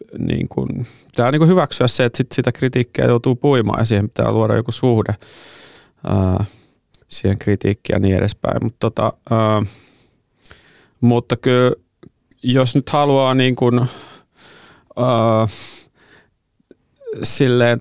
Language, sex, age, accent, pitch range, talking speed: Finnish, male, 30-49, native, 110-130 Hz, 120 wpm